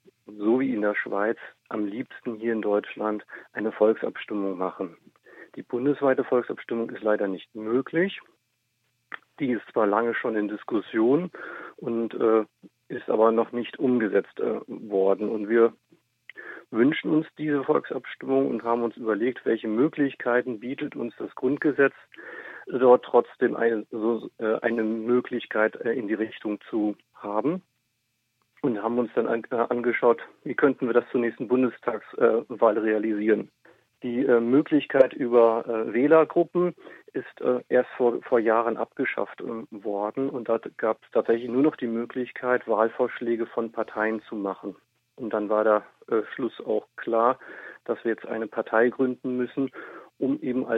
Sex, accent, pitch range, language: male, German, 110-125 Hz, German